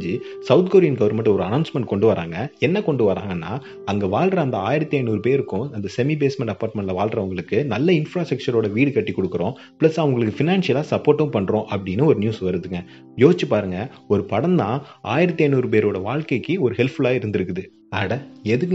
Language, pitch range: Tamil, 105-140 Hz